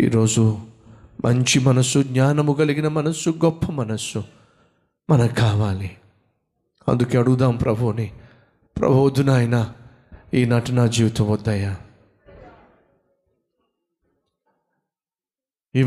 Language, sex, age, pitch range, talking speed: Telugu, male, 30-49, 125-205 Hz, 85 wpm